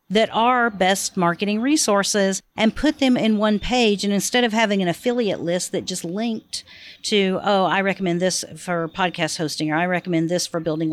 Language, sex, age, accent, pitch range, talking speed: English, female, 50-69, American, 170-215 Hz, 190 wpm